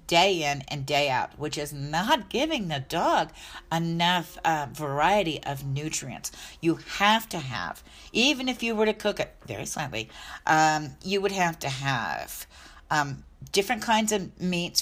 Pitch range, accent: 145-200 Hz, American